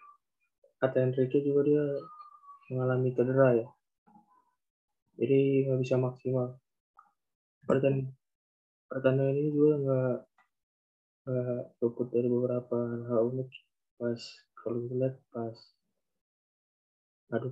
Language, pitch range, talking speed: Indonesian, 120-140 Hz, 80 wpm